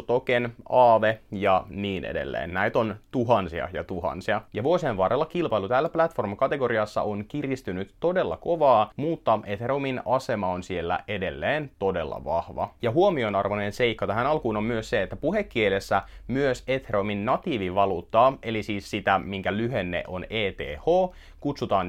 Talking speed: 135 wpm